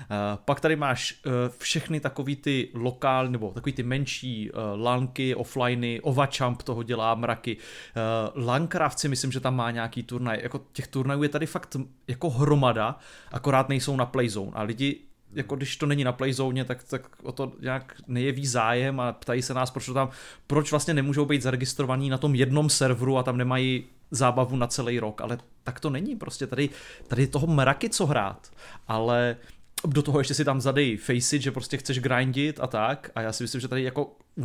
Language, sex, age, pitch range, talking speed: Czech, male, 30-49, 125-140 Hz, 190 wpm